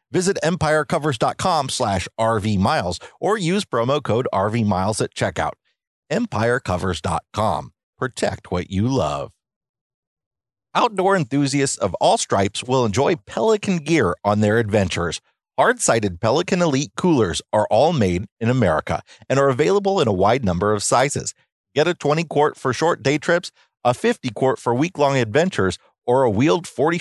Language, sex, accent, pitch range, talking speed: English, male, American, 95-140 Hz, 135 wpm